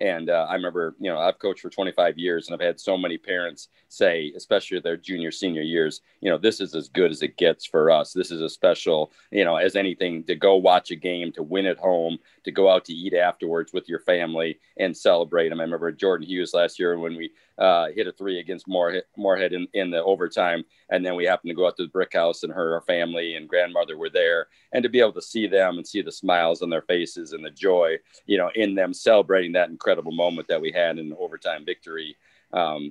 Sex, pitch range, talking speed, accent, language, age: male, 80-110 Hz, 245 wpm, American, English, 40-59